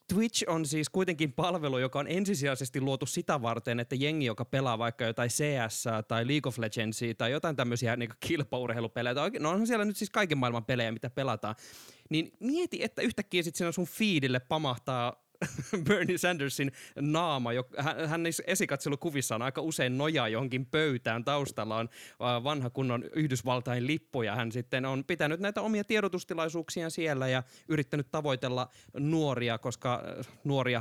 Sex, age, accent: male, 20-39, native